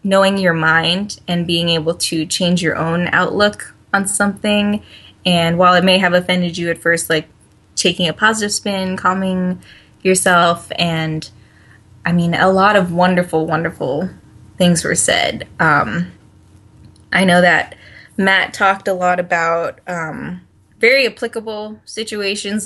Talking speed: 140 wpm